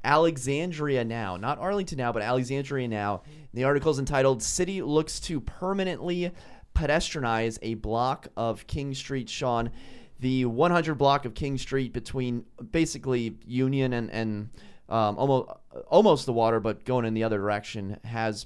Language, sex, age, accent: English, male, 30-49, American